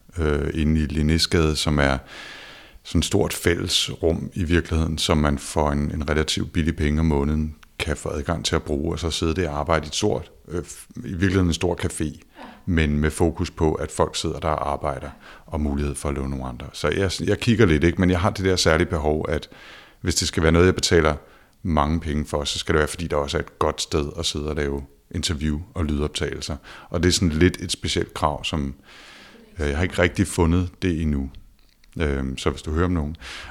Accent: native